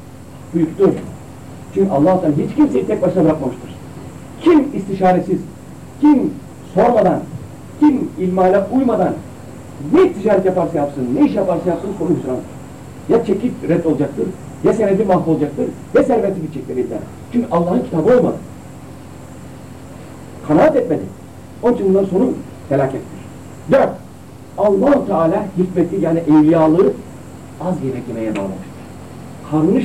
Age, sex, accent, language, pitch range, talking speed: 60-79, male, native, Turkish, 140-200 Hz, 115 wpm